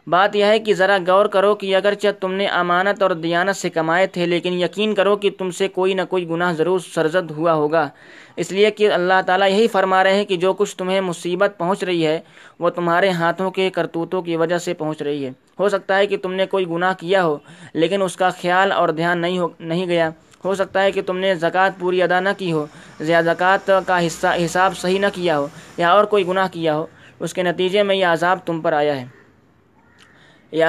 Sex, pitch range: male, 170-190 Hz